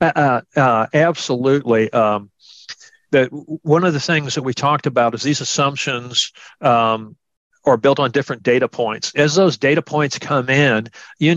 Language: English